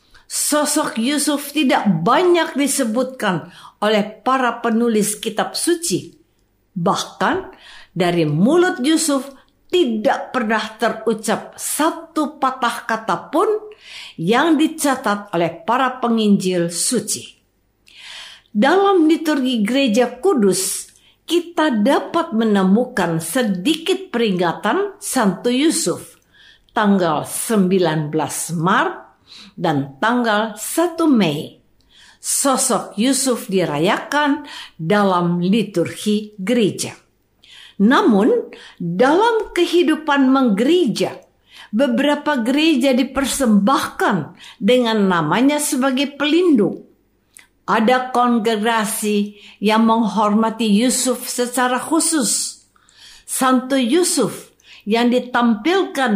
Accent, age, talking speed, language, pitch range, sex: native, 50-69, 80 wpm, Indonesian, 210-290 Hz, female